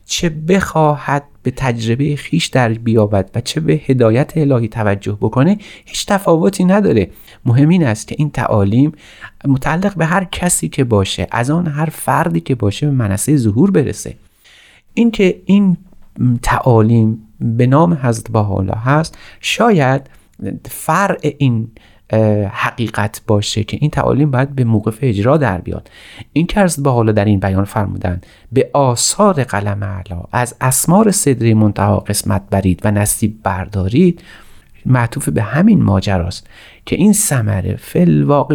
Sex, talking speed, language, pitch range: male, 140 wpm, Persian, 105-145 Hz